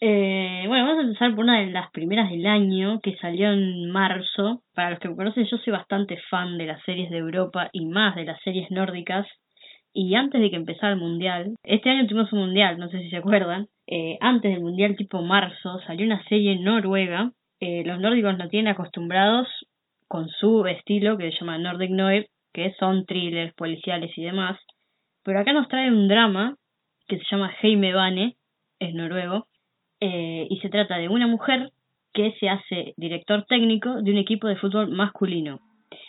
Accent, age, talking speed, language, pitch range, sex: Argentinian, 10-29, 190 wpm, Spanish, 175-210 Hz, female